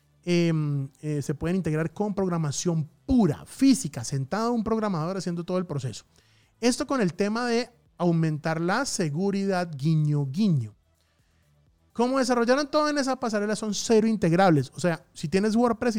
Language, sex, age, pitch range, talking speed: Spanish, male, 30-49, 150-210 Hz, 150 wpm